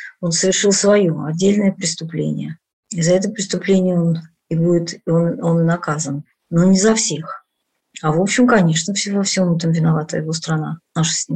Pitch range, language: 160-195 Hz, Russian